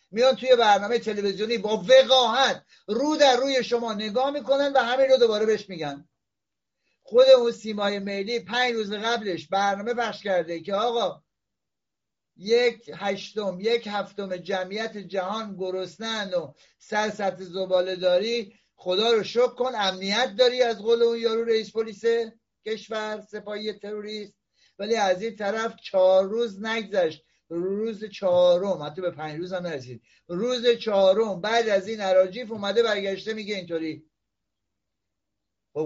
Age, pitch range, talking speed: 60-79, 170-225 Hz, 135 wpm